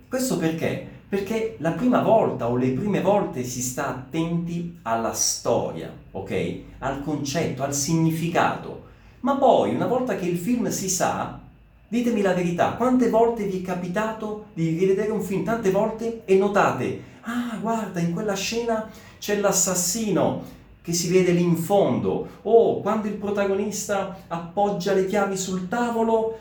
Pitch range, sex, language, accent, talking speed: 150-200 Hz, male, Italian, native, 150 wpm